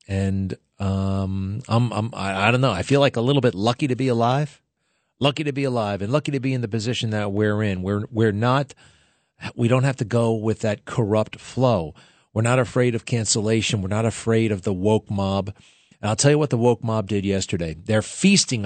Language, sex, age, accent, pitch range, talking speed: English, male, 40-59, American, 110-140 Hz, 215 wpm